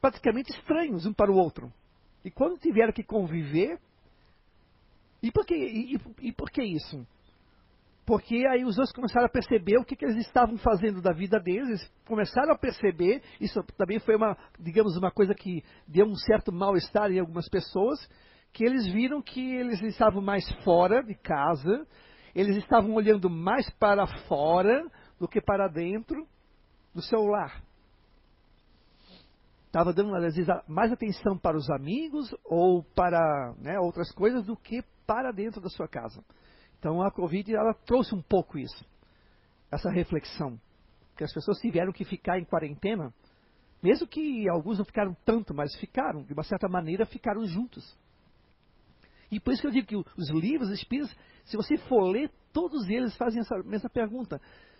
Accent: Brazilian